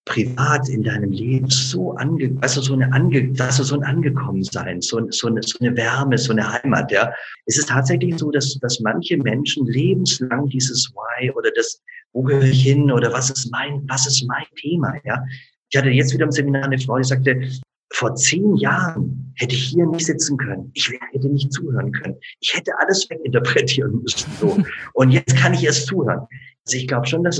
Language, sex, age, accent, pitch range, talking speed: German, male, 50-69, German, 125-145 Hz, 200 wpm